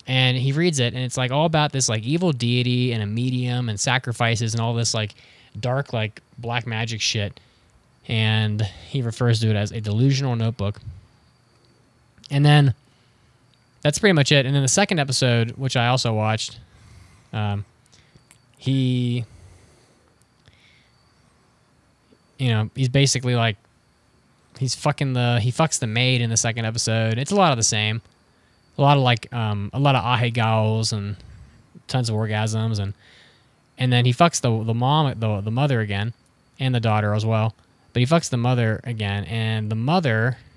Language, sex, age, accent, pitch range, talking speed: English, male, 20-39, American, 110-135 Hz, 170 wpm